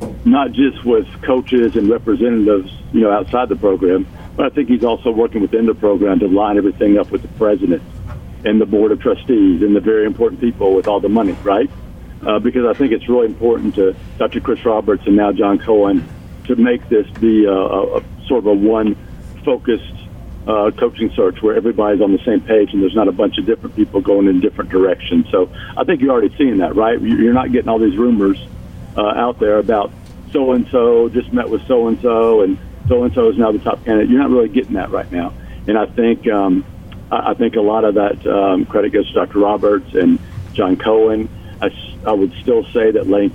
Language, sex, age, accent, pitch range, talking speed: English, male, 60-79, American, 100-115 Hz, 215 wpm